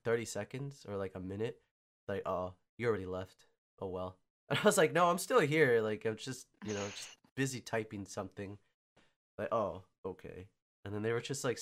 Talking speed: 205 wpm